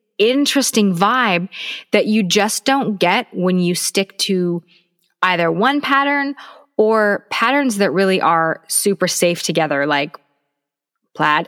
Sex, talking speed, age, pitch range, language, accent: female, 125 wpm, 20-39, 175-245 Hz, English, American